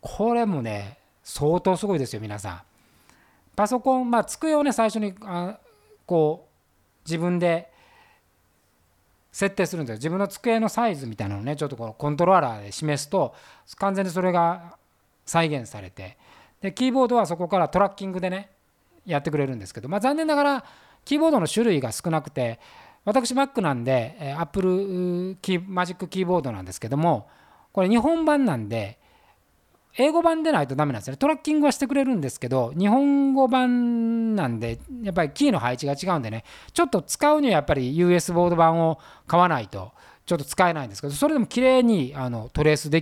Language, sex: Japanese, male